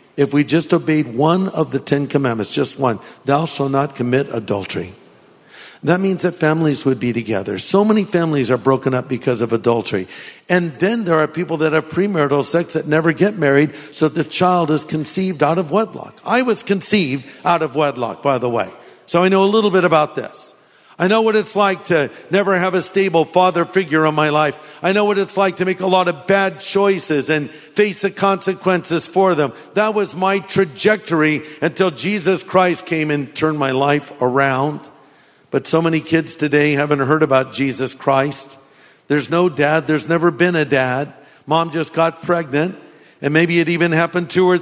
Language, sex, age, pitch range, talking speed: English, male, 50-69, 145-185 Hz, 195 wpm